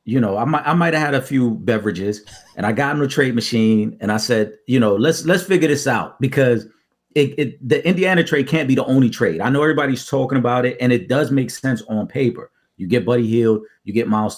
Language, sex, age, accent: English, male, 40-59, American